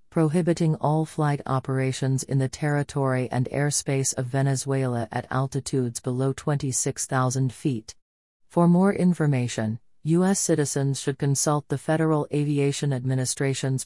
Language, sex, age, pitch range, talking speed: English, female, 40-59, 130-155 Hz, 115 wpm